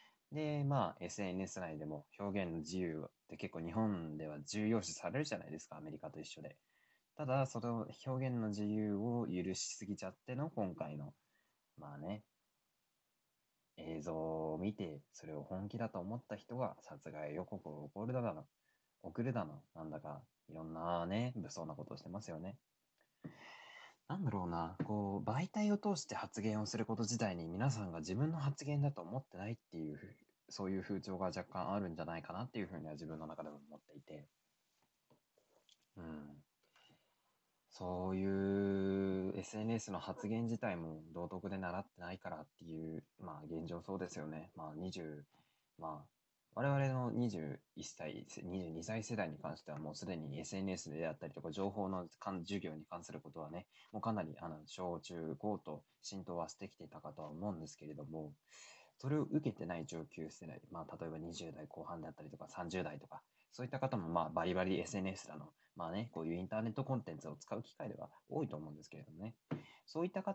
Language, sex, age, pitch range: Japanese, male, 20-39, 80-115 Hz